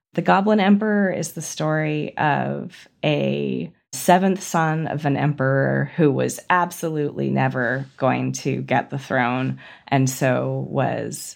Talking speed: 130 wpm